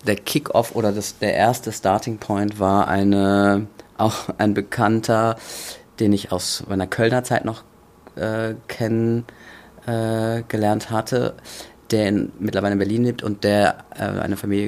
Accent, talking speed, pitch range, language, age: German, 145 wpm, 100-110 Hz, German, 30-49